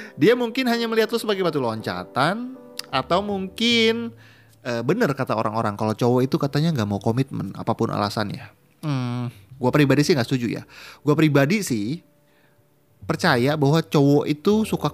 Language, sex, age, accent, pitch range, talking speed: Indonesian, male, 30-49, native, 110-165 Hz, 155 wpm